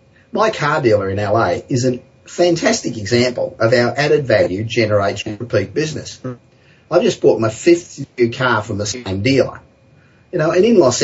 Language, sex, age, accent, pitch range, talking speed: English, male, 30-49, Australian, 110-145 Hz, 170 wpm